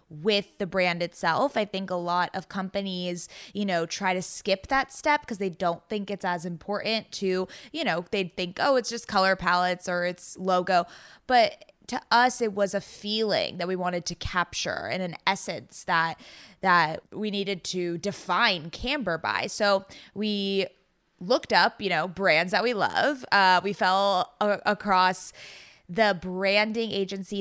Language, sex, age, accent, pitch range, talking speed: English, female, 20-39, American, 185-230 Hz, 175 wpm